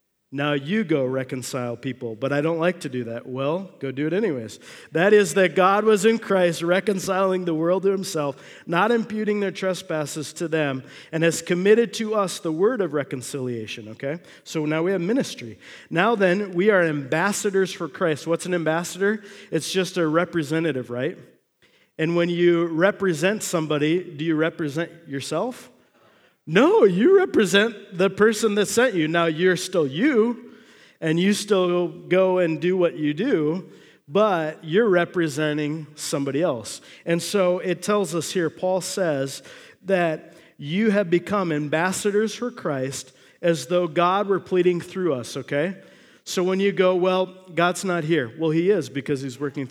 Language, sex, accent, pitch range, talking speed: English, male, American, 155-195 Hz, 165 wpm